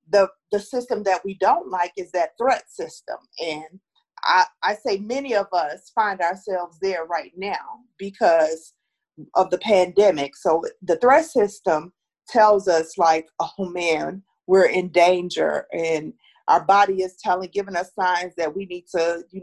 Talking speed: 160 wpm